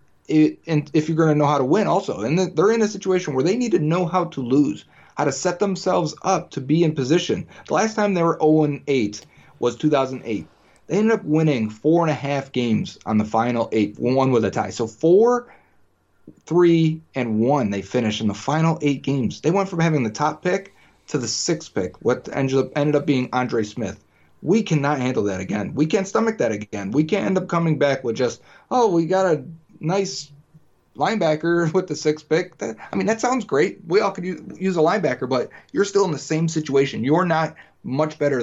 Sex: male